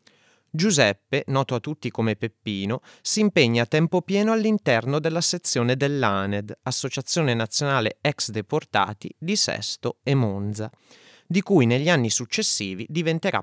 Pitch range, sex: 110-170 Hz, male